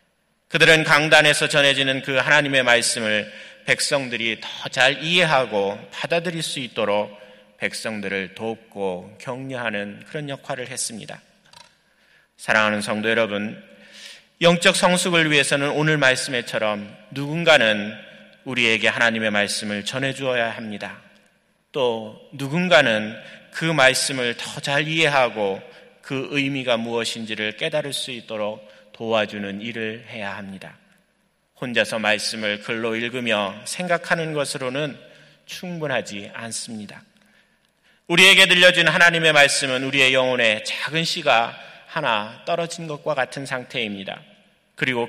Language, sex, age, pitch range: Korean, male, 30-49, 110-150 Hz